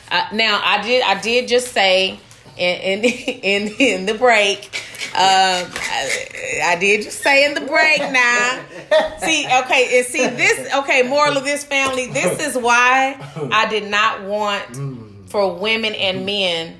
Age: 30-49